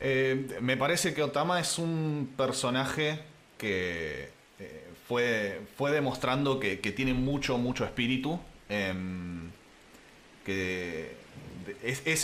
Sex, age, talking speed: male, 20-39, 110 wpm